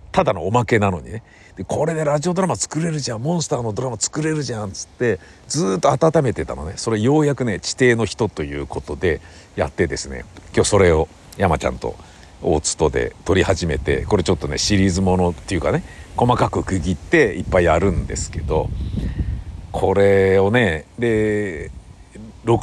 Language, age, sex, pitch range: Japanese, 50-69, male, 85-125 Hz